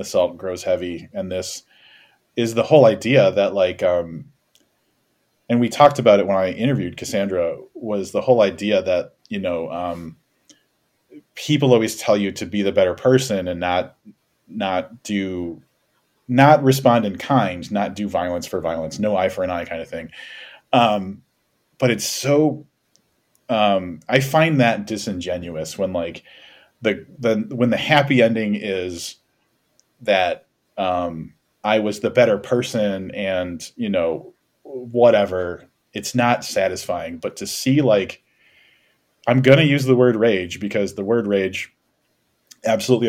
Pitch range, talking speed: 90-120 Hz, 150 wpm